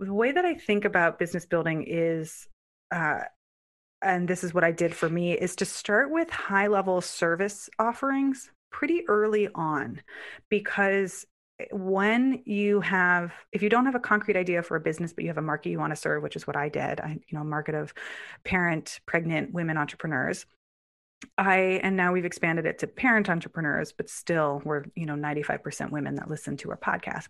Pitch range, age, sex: 165-210 Hz, 30-49, female